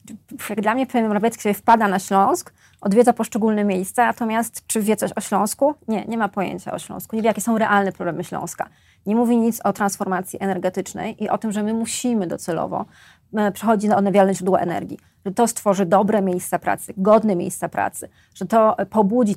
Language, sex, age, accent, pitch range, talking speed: Polish, female, 30-49, native, 190-220 Hz, 185 wpm